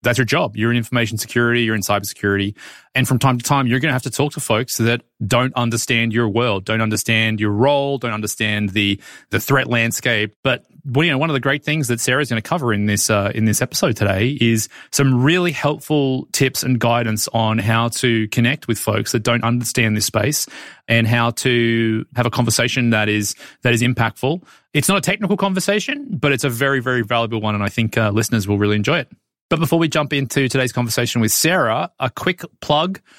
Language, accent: English, Australian